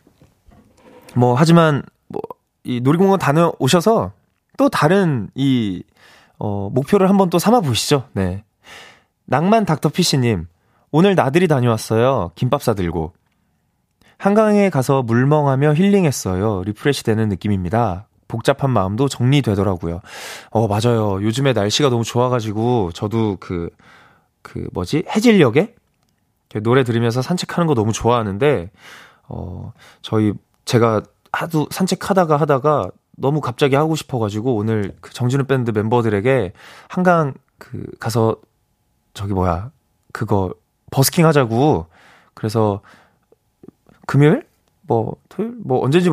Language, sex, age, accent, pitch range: Korean, male, 20-39, native, 110-155 Hz